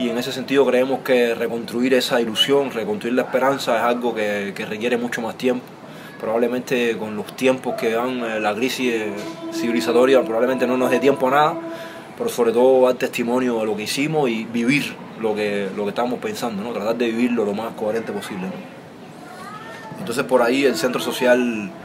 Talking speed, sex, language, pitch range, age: 185 wpm, male, English, 115-135 Hz, 20-39